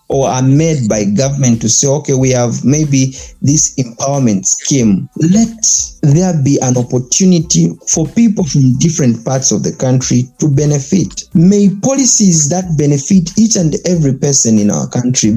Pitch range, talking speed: 120-170 Hz, 155 wpm